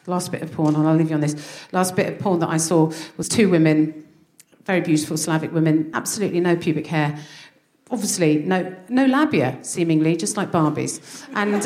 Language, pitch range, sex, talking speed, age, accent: English, 175-275 Hz, female, 190 wpm, 40-59, British